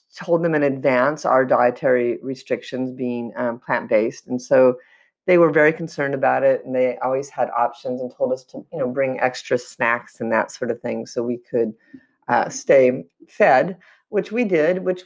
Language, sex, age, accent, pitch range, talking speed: English, female, 30-49, American, 125-170 Hz, 190 wpm